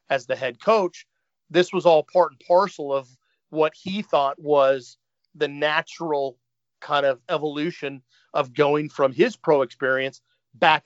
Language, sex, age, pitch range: English, male, 40-59, 145-180 Hz